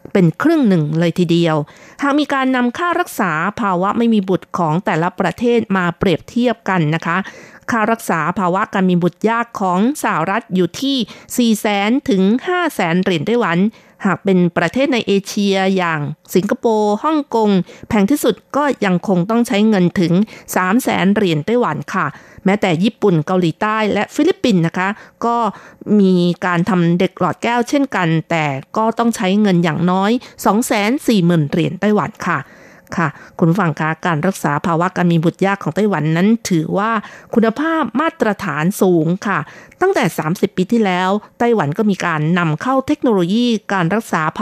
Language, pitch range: Thai, 175-230 Hz